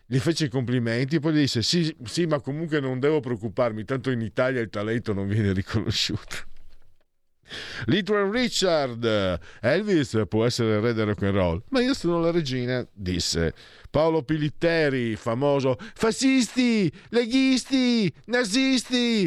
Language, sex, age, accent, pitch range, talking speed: Italian, male, 50-69, native, 100-150 Hz, 140 wpm